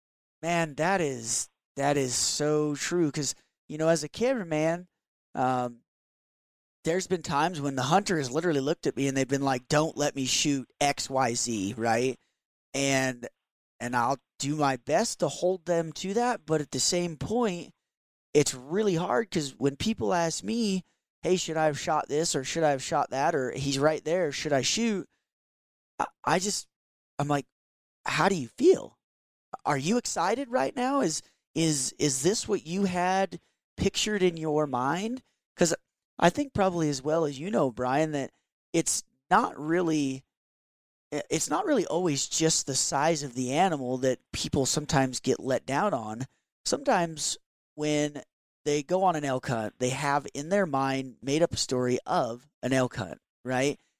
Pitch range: 135-175 Hz